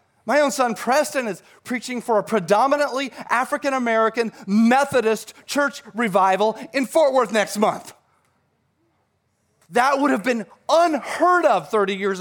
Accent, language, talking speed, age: American, English, 130 wpm, 30-49